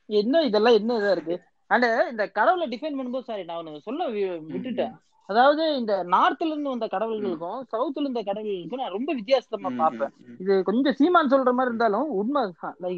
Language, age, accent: Tamil, 20-39, native